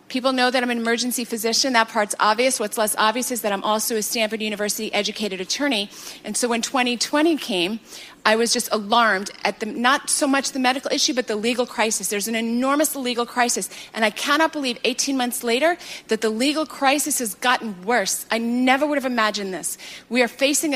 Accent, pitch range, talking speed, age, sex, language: American, 215-265 Hz, 200 wpm, 30-49, female, English